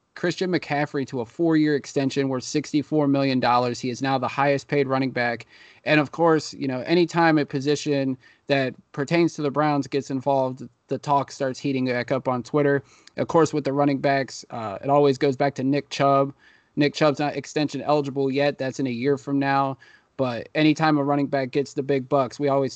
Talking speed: 205 wpm